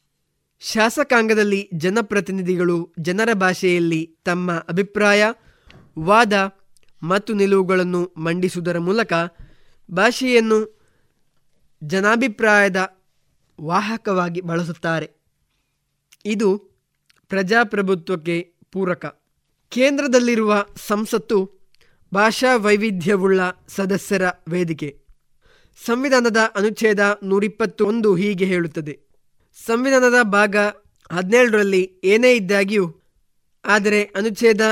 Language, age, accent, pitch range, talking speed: Kannada, 20-39, native, 185-225 Hz, 60 wpm